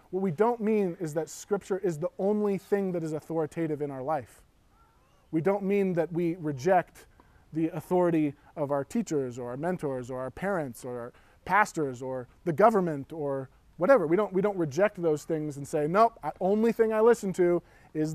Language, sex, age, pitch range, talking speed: English, male, 20-39, 150-195 Hz, 195 wpm